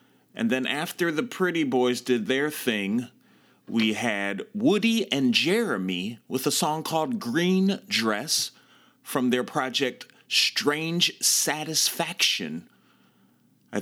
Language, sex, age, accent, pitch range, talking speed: English, male, 30-49, American, 125-155 Hz, 115 wpm